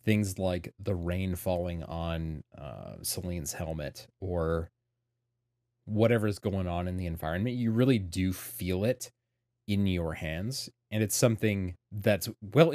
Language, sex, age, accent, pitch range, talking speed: English, male, 30-49, American, 90-120 Hz, 135 wpm